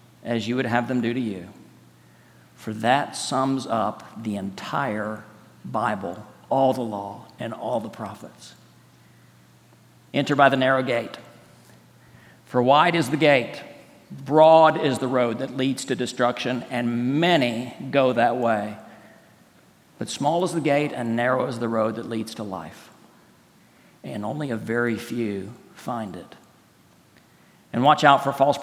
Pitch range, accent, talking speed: 115-150 Hz, American, 150 wpm